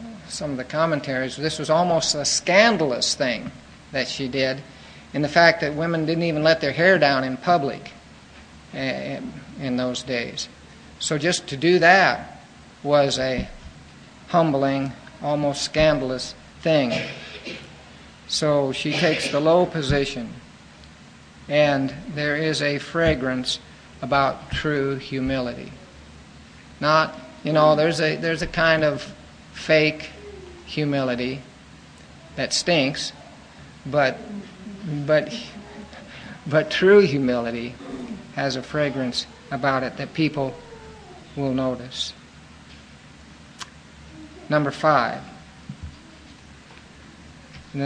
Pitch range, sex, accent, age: 120-155 Hz, male, American, 50-69